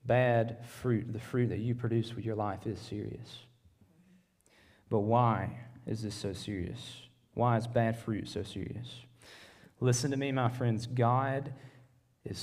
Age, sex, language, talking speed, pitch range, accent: 20-39, male, English, 150 wpm, 110-130 Hz, American